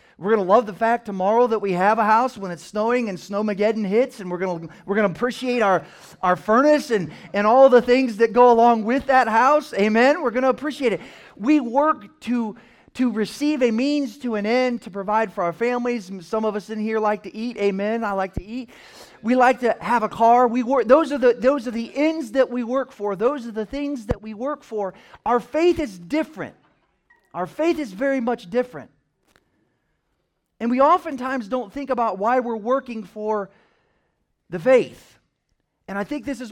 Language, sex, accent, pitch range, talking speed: English, male, American, 205-260 Hz, 210 wpm